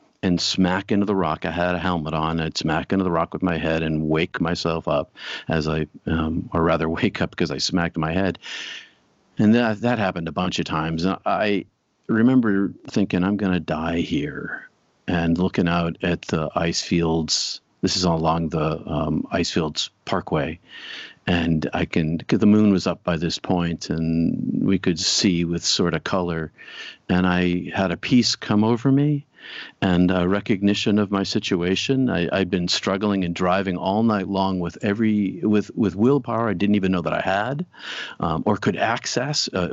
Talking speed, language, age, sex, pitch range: 190 wpm, English, 50-69, male, 80-100 Hz